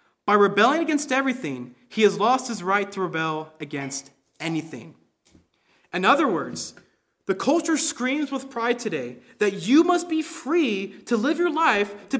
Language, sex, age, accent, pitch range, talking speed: English, male, 30-49, American, 215-310 Hz, 155 wpm